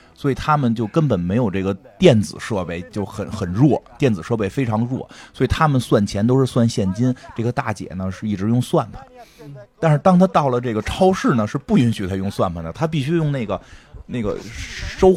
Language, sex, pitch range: Chinese, male, 115-170 Hz